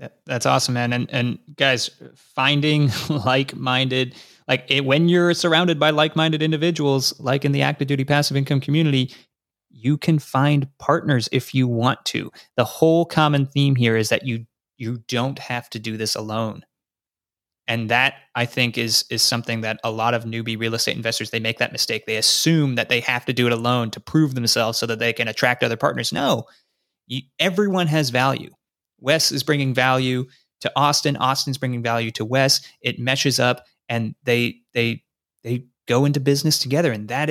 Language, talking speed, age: English, 185 wpm, 20-39